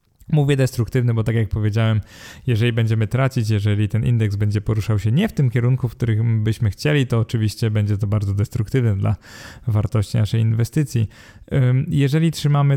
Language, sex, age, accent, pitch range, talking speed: Polish, male, 20-39, native, 110-125 Hz, 165 wpm